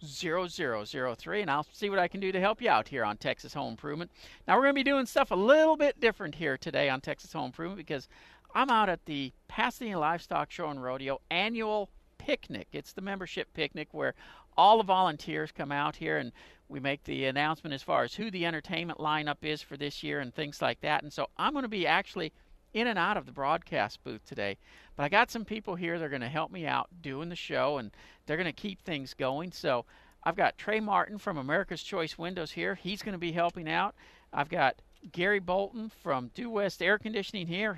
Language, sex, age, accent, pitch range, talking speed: English, male, 50-69, American, 145-205 Hz, 225 wpm